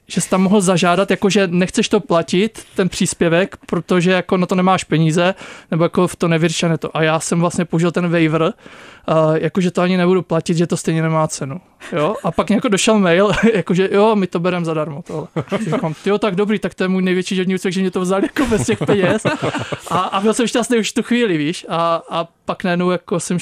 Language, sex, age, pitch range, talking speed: Czech, male, 20-39, 160-185 Hz, 220 wpm